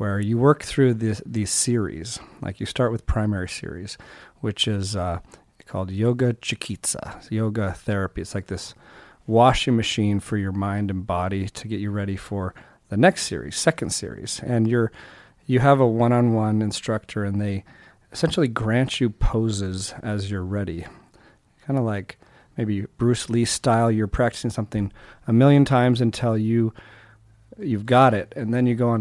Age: 40-59